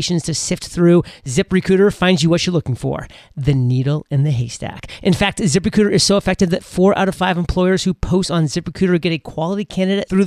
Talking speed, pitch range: 210 wpm, 155-185 Hz